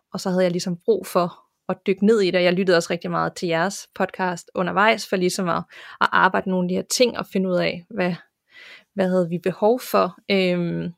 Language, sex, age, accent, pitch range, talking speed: Danish, female, 20-39, native, 180-210 Hz, 235 wpm